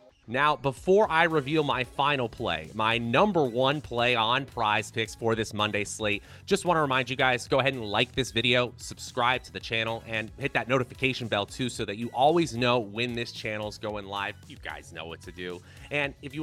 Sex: male